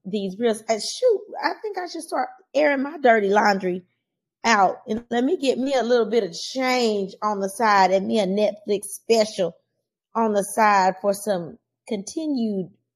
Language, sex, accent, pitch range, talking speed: English, female, American, 185-245 Hz, 175 wpm